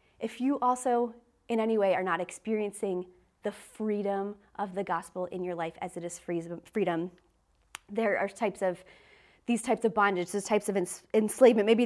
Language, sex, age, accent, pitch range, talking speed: English, female, 30-49, American, 195-255 Hz, 170 wpm